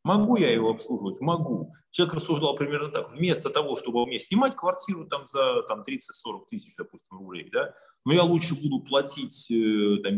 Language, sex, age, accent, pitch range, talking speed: Russian, male, 30-49, native, 140-220 Hz, 170 wpm